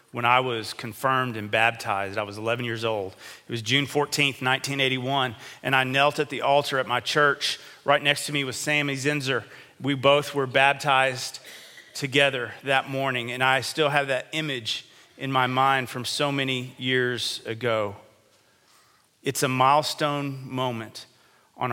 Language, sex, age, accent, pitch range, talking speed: English, male, 40-59, American, 120-145 Hz, 160 wpm